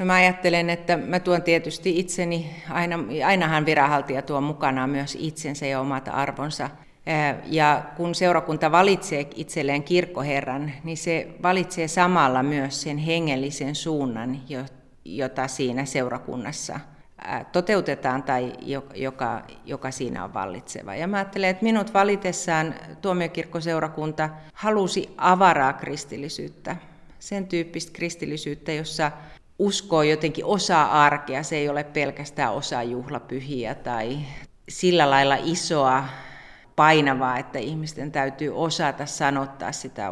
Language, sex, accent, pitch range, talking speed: Finnish, female, native, 140-175 Hz, 115 wpm